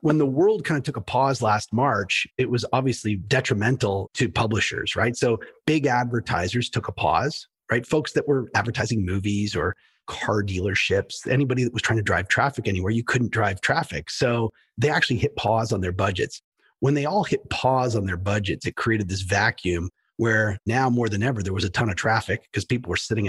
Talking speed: 205 wpm